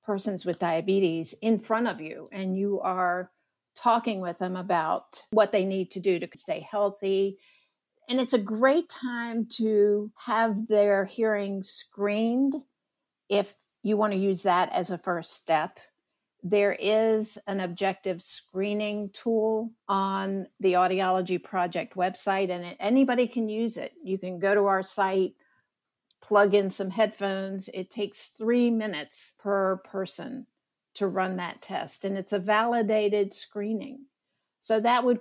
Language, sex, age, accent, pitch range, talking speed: English, female, 50-69, American, 185-225 Hz, 145 wpm